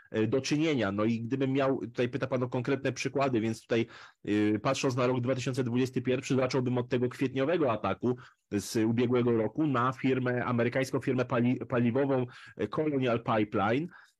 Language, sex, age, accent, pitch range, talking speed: Polish, male, 30-49, native, 120-145 Hz, 140 wpm